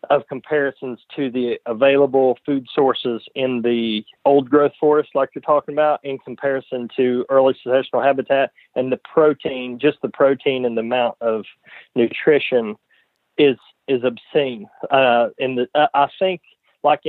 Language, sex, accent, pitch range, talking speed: English, male, American, 125-150 Hz, 150 wpm